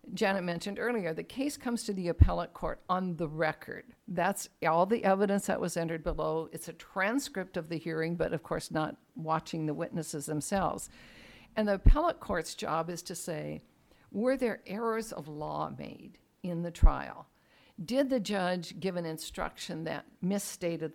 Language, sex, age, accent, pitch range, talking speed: English, female, 60-79, American, 160-210 Hz, 170 wpm